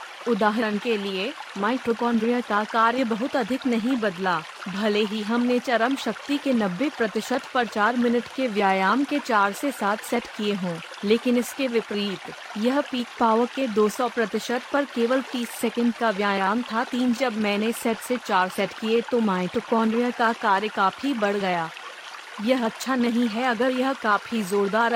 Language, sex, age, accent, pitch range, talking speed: Hindi, female, 30-49, native, 215-255 Hz, 165 wpm